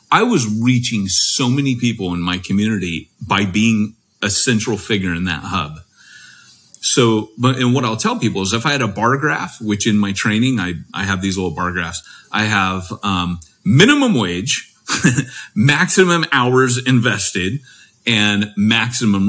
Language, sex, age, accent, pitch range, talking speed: English, male, 30-49, American, 95-120 Hz, 160 wpm